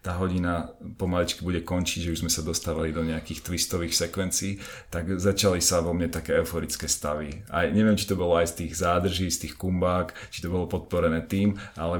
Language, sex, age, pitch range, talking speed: Slovak, male, 30-49, 80-95 Hz, 200 wpm